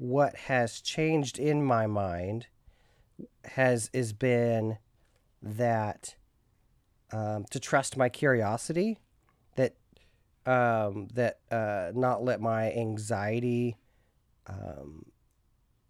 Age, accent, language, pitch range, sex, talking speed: 30-49, American, English, 105-125 Hz, male, 90 wpm